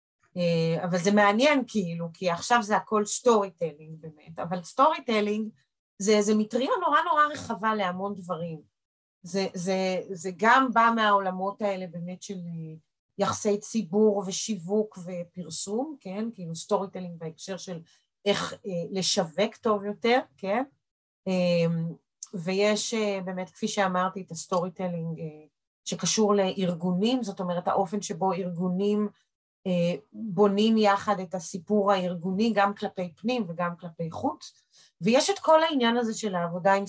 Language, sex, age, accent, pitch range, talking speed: Hebrew, female, 30-49, native, 175-215 Hz, 135 wpm